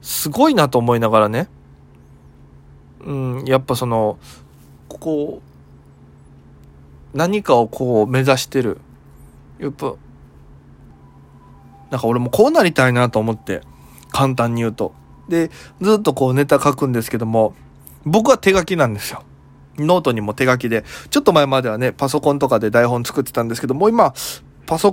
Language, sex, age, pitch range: Japanese, male, 20-39, 110-160 Hz